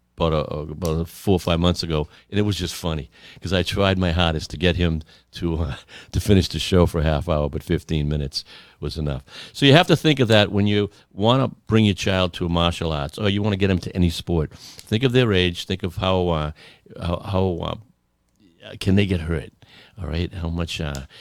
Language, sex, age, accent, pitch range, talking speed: English, male, 60-79, American, 80-100 Hz, 240 wpm